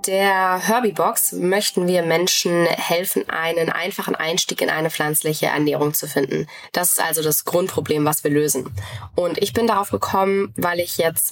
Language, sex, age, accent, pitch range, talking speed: German, female, 20-39, German, 155-180 Hz, 165 wpm